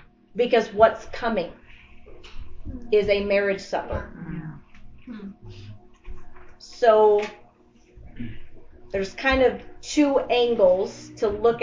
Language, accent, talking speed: English, American, 75 wpm